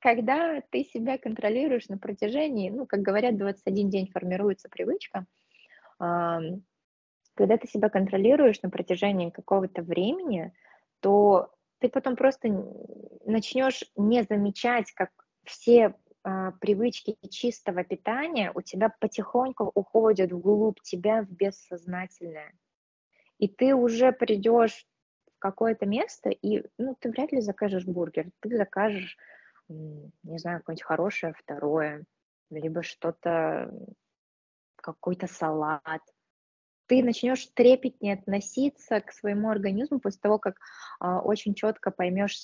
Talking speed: 115 wpm